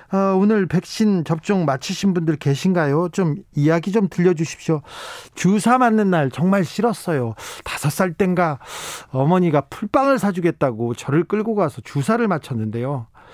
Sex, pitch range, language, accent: male, 145-195 Hz, Korean, native